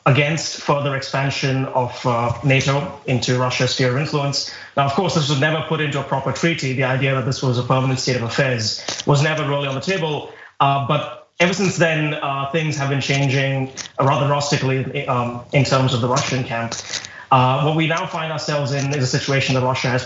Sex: male